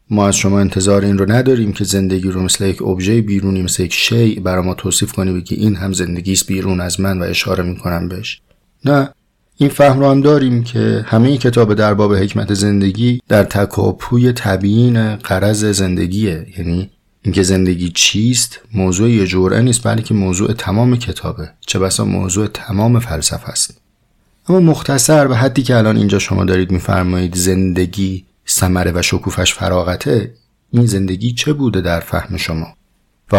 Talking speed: 165 wpm